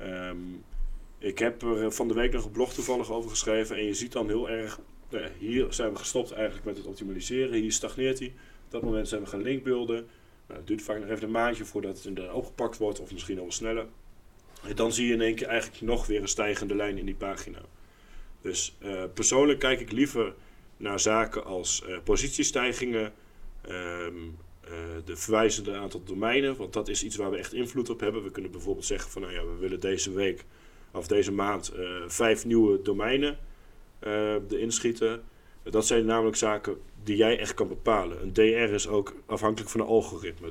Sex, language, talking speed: male, Dutch, 195 wpm